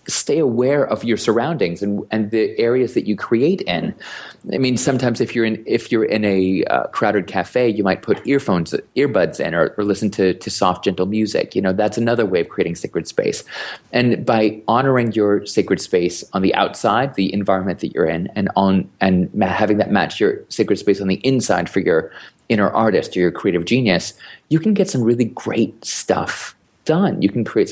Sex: male